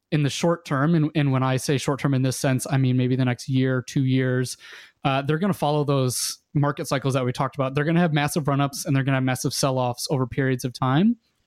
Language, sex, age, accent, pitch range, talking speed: English, male, 20-39, American, 135-155 Hz, 265 wpm